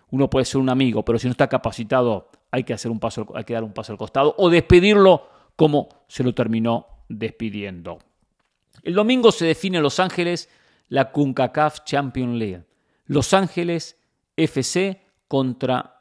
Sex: male